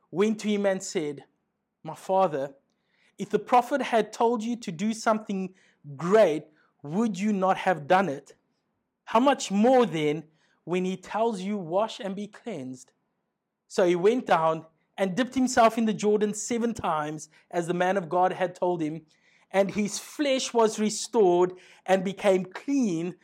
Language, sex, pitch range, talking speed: English, male, 165-220 Hz, 165 wpm